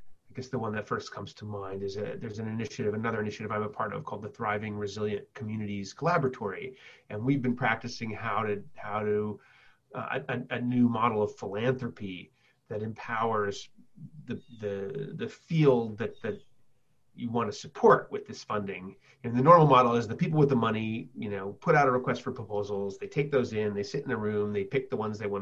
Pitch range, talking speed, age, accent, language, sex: 105-130 Hz, 210 wpm, 30-49, American, English, male